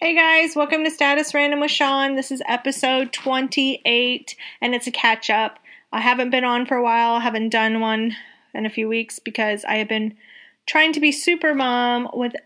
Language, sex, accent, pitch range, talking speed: English, female, American, 225-270 Hz, 200 wpm